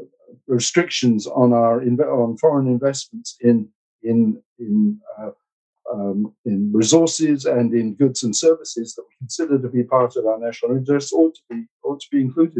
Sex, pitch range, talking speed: male, 105-130 Hz, 165 wpm